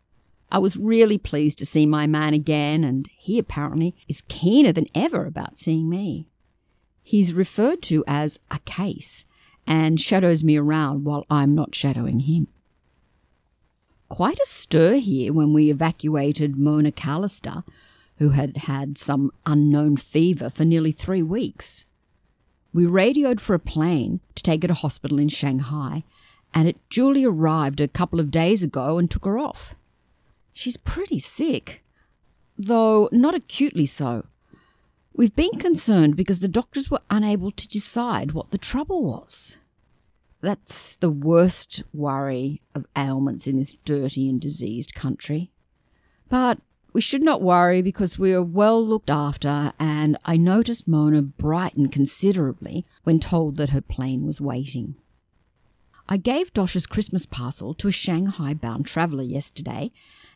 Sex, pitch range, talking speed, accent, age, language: female, 145-195 Hz, 145 wpm, Australian, 50-69, English